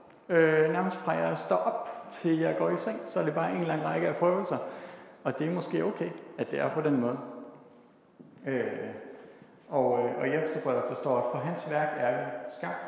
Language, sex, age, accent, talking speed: Danish, male, 60-79, native, 200 wpm